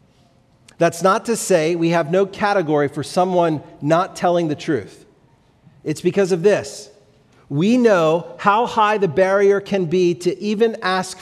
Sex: male